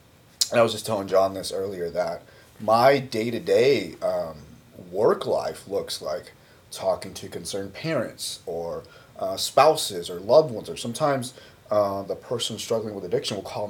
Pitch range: 105-135 Hz